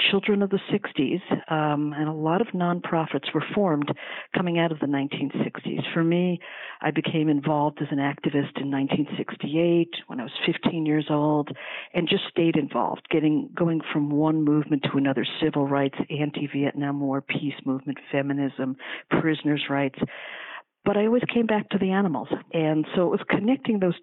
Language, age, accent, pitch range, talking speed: English, 50-69, American, 145-175 Hz, 165 wpm